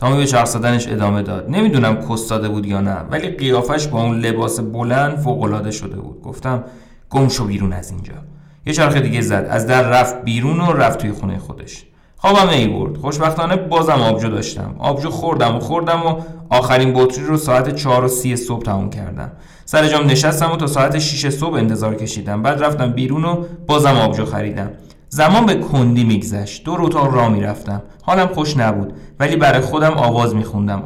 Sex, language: male, Persian